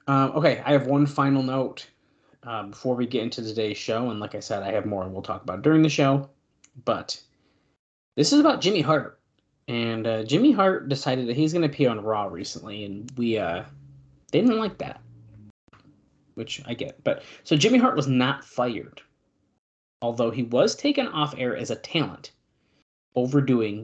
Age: 30-49